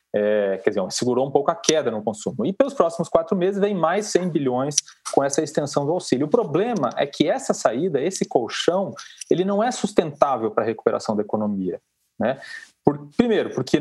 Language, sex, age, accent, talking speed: Portuguese, male, 40-59, Brazilian, 185 wpm